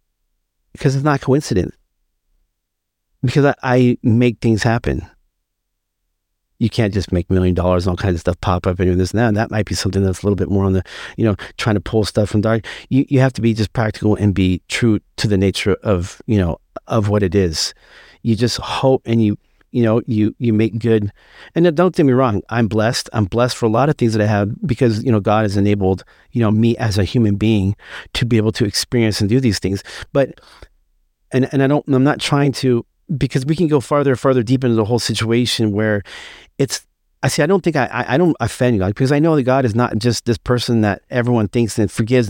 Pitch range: 95-130 Hz